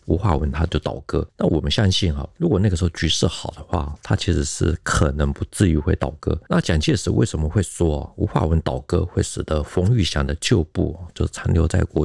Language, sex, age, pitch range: Chinese, male, 50-69, 80-95 Hz